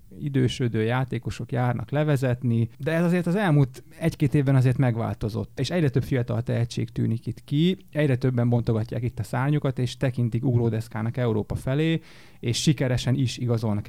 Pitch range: 115-145 Hz